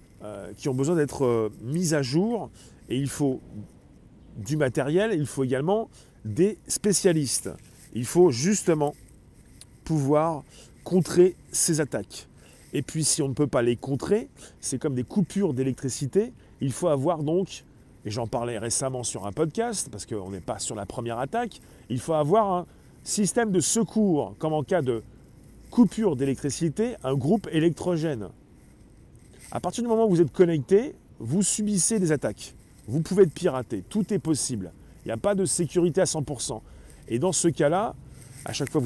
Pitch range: 130-200 Hz